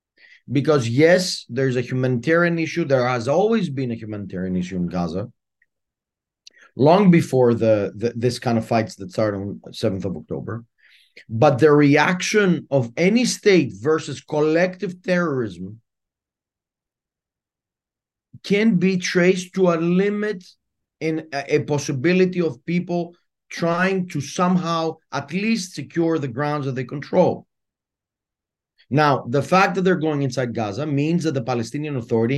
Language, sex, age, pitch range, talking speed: English, male, 30-49, 125-170 Hz, 135 wpm